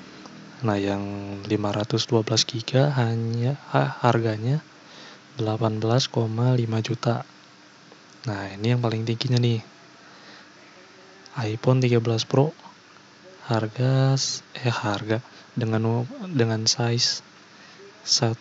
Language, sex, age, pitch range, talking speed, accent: Indonesian, male, 20-39, 110-125 Hz, 80 wpm, native